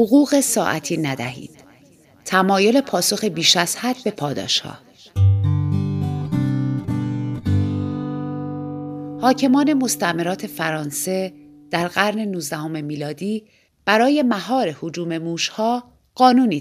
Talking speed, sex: 85 wpm, female